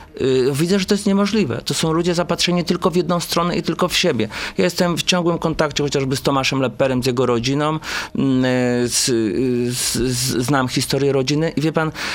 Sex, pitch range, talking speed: male, 130-160 Hz, 190 wpm